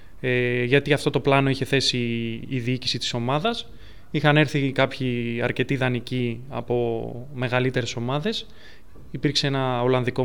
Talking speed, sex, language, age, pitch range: 135 wpm, male, Greek, 20-39, 125-165 Hz